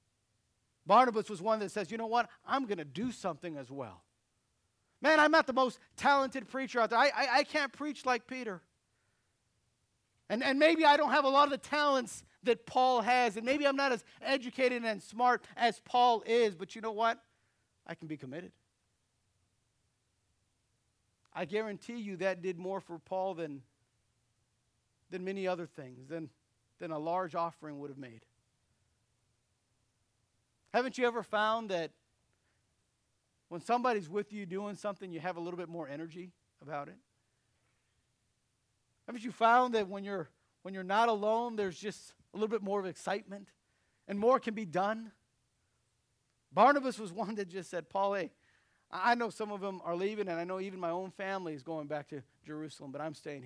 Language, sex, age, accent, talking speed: English, male, 50-69, American, 175 wpm